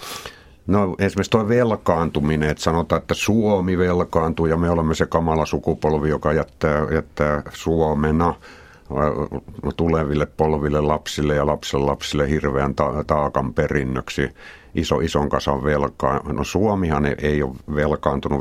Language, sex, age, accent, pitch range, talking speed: Finnish, male, 60-79, native, 70-80 Hz, 125 wpm